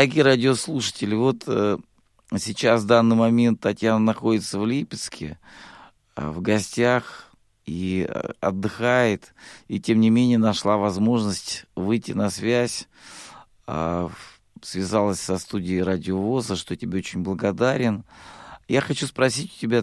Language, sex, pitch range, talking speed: Russian, male, 110-150 Hz, 125 wpm